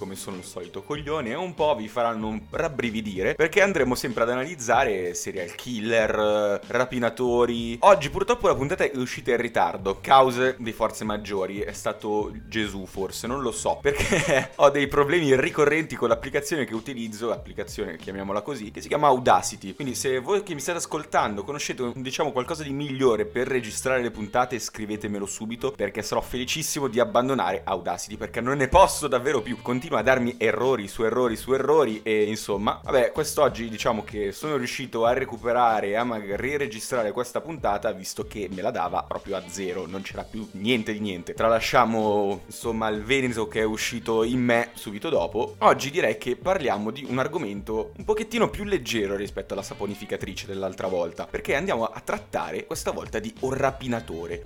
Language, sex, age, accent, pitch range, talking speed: Italian, male, 30-49, native, 105-135 Hz, 175 wpm